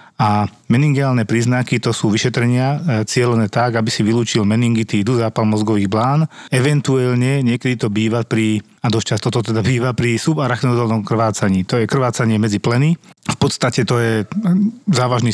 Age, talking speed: 30-49, 150 wpm